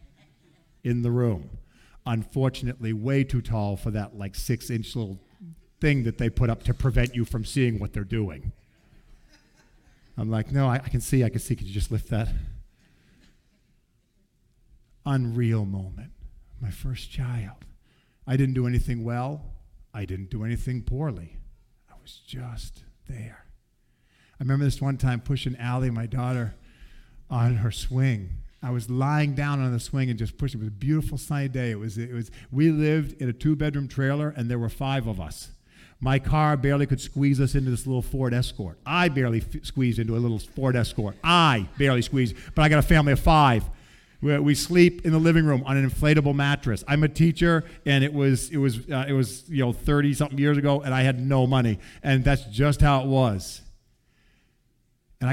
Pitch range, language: 115-140 Hz, English